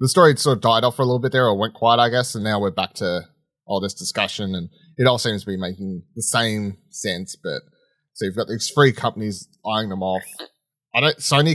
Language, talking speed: English, 245 wpm